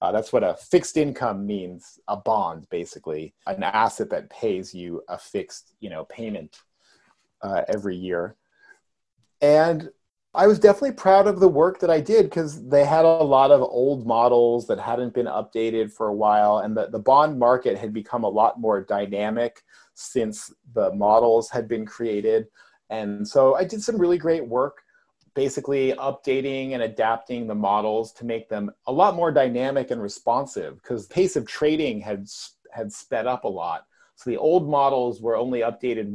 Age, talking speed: 30-49, 180 wpm